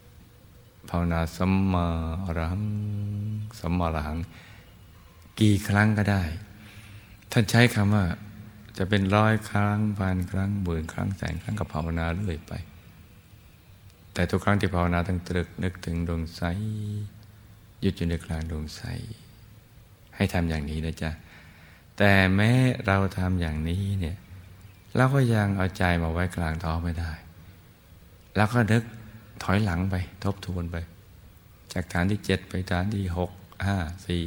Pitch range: 85-105 Hz